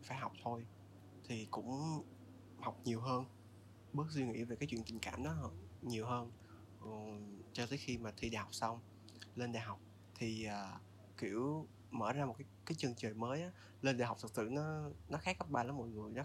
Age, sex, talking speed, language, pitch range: 20-39, male, 210 wpm, Vietnamese, 105-140 Hz